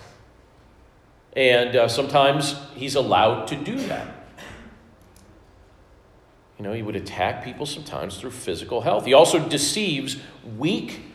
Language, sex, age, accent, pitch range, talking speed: English, male, 40-59, American, 140-190 Hz, 120 wpm